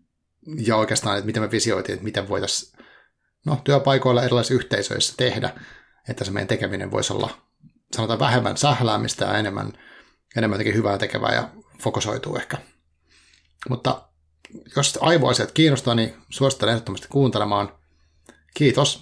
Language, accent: Finnish, native